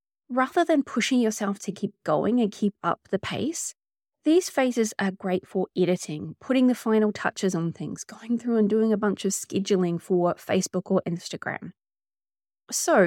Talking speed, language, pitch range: 170 wpm, English, 185-235 Hz